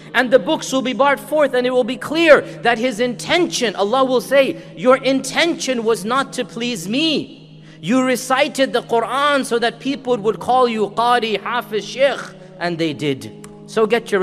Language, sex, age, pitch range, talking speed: English, male, 40-59, 200-260 Hz, 185 wpm